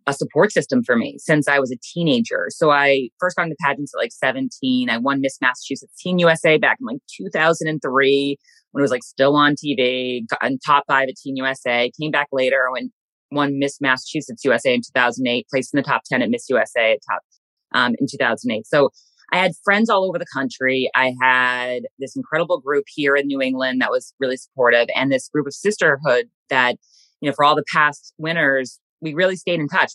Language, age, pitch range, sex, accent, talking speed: English, 20-39, 130-165 Hz, female, American, 210 wpm